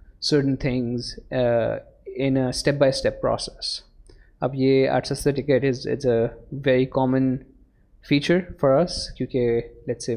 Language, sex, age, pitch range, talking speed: Urdu, male, 20-39, 120-135 Hz, 130 wpm